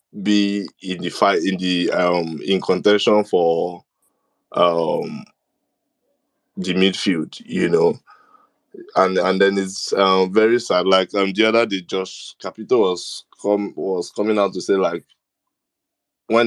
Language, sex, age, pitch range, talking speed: English, male, 20-39, 90-110 Hz, 140 wpm